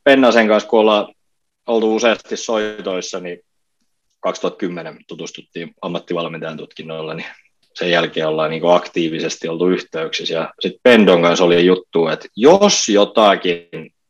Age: 30-49